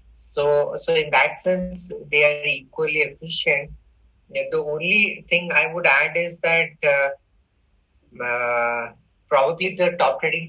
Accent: Indian